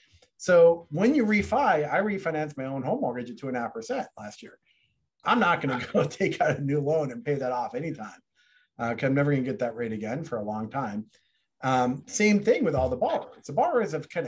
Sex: male